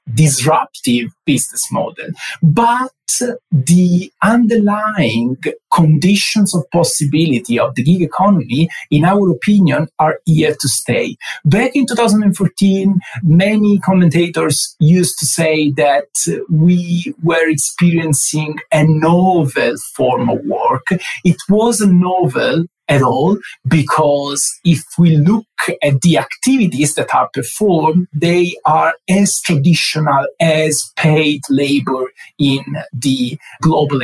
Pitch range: 145-180 Hz